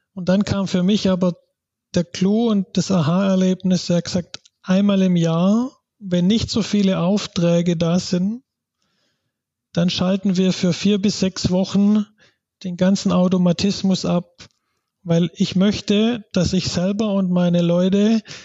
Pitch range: 175-200 Hz